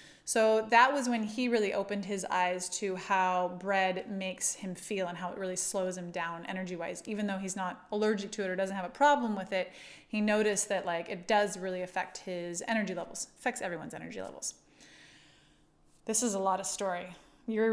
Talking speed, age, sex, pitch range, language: 200 wpm, 20-39, female, 195-265 Hz, English